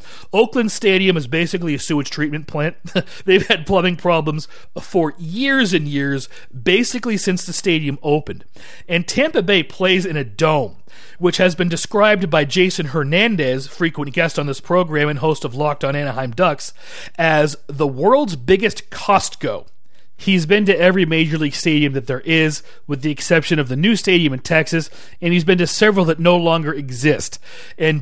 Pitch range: 150-190 Hz